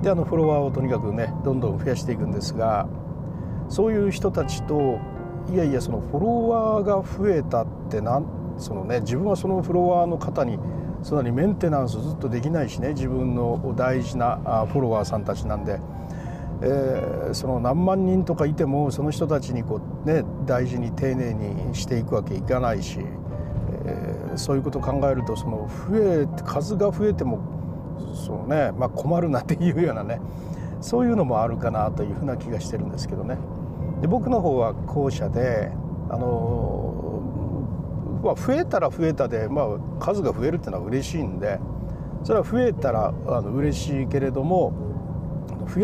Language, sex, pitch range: Japanese, male, 130-175 Hz